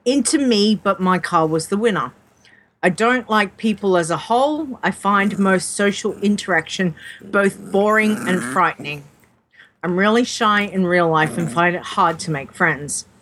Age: 40-59